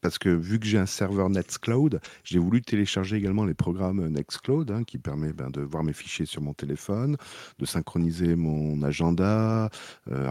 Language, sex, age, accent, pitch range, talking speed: French, male, 40-59, French, 80-100 Hz, 180 wpm